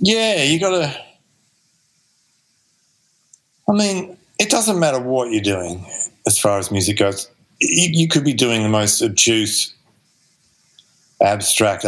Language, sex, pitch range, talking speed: English, male, 95-130 Hz, 125 wpm